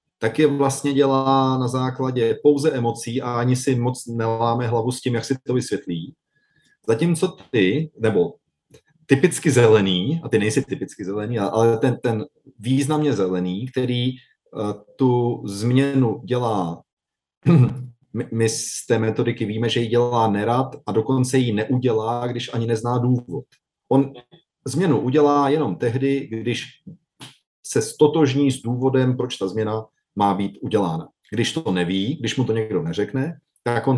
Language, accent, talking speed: Czech, native, 145 wpm